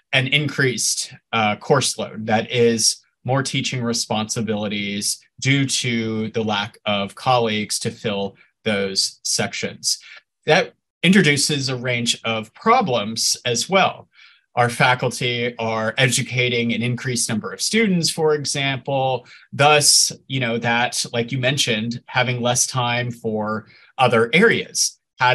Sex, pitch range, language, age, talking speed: male, 110-135 Hz, English, 30-49, 125 wpm